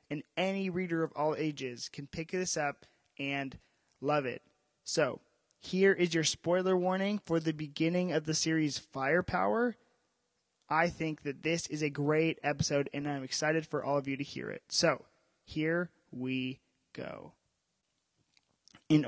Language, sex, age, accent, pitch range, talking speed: English, male, 20-39, American, 135-160 Hz, 155 wpm